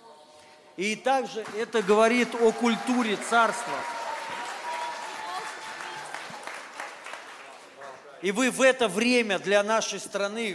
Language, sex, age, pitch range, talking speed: Russian, male, 40-59, 180-240 Hz, 85 wpm